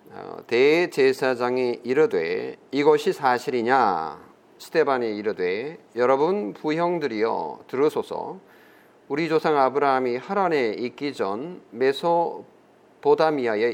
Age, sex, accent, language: 40-59, male, native, Korean